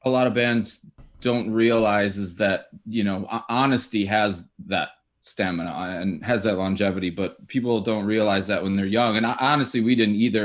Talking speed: 180 wpm